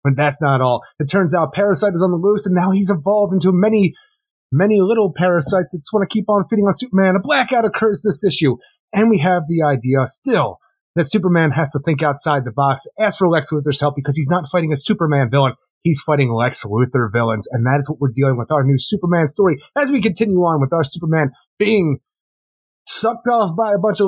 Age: 30-49